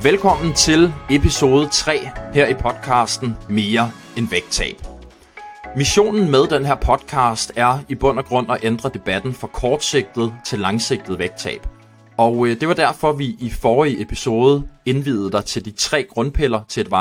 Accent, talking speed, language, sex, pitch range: native, 160 wpm, Danish, male, 110-135 Hz